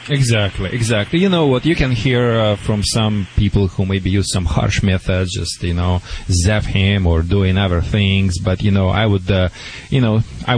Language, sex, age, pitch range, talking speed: English, male, 30-49, 95-120 Hz, 205 wpm